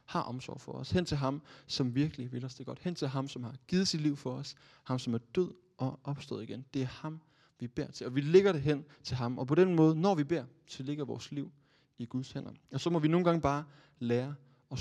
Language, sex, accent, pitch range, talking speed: Danish, male, native, 125-150 Hz, 270 wpm